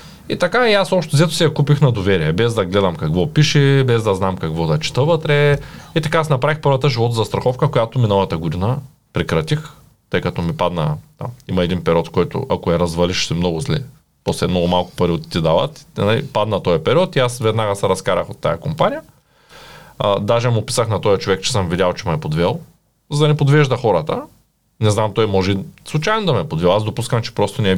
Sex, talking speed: male, 220 wpm